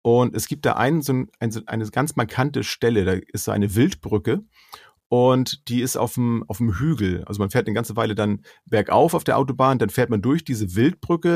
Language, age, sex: German, 40-59, male